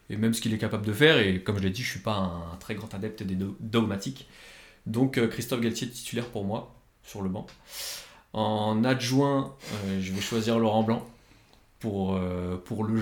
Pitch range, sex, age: 95-115 Hz, male, 20-39